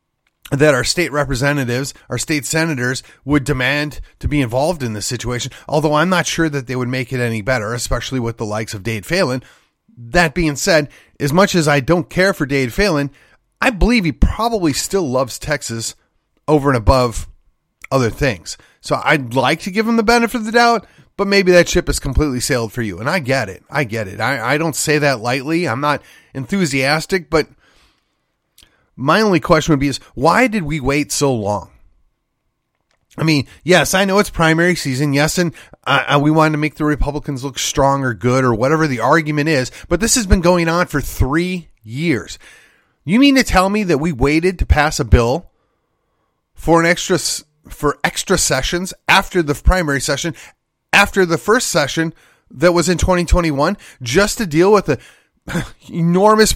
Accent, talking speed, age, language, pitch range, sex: American, 190 wpm, 30-49, English, 130-175 Hz, male